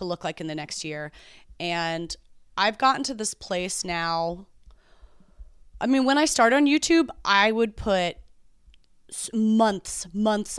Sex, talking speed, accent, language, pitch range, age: female, 145 wpm, American, English, 180-220 Hz, 30-49